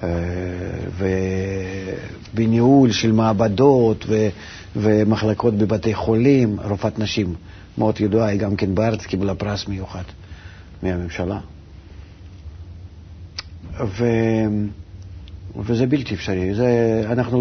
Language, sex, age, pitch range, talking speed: Hebrew, male, 50-69, 95-125 Hz, 85 wpm